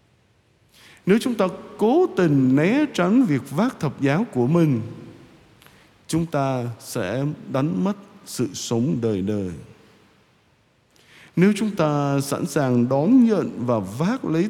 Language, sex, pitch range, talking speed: Vietnamese, male, 120-175 Hz, 130 wpm